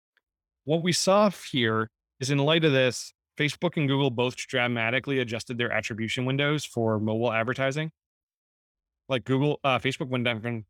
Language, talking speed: English, 155 wpm